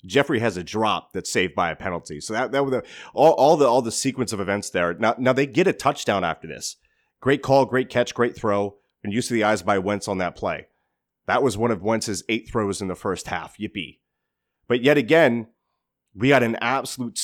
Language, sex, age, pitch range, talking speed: English, male, 30-49, 100-130 Hz, 230 wpm